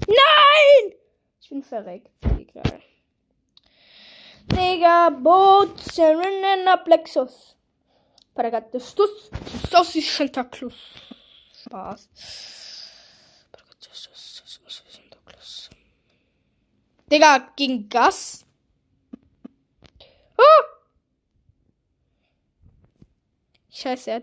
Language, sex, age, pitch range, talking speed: German, female, 20-39, 255-370 Hz, 55 wpm